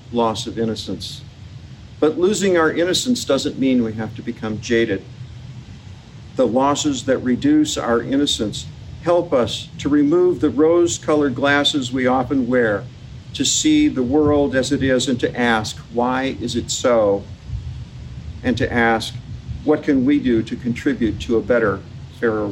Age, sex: 50-69, male